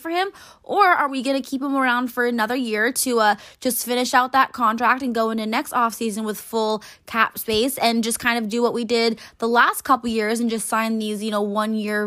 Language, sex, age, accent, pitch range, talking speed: English, female, 20-39, American, 220-280 Hz, 240 wpm